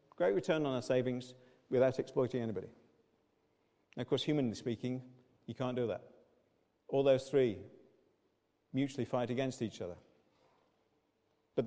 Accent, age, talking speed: British, 50-69, 130 wpm